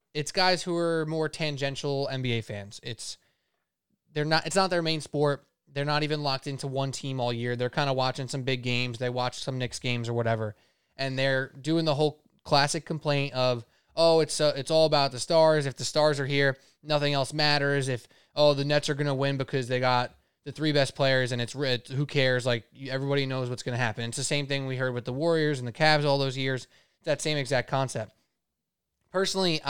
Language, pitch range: English, 135-170 Hz